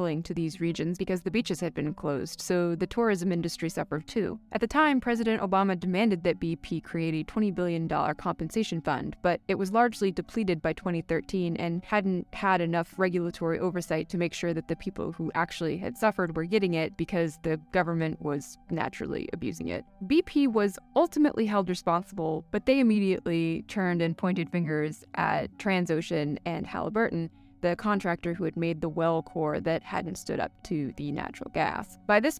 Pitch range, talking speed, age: 165-195 Hz, 180 wpm, 20-39